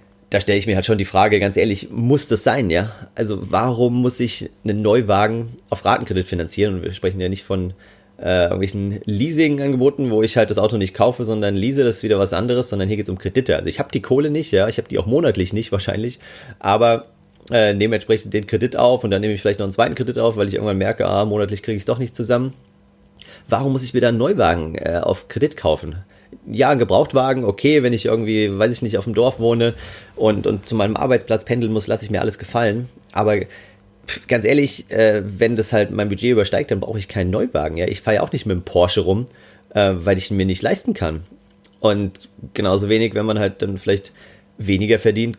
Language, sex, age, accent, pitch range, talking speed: German, male, 30-49, German, 100-115 Hz, 235 wpm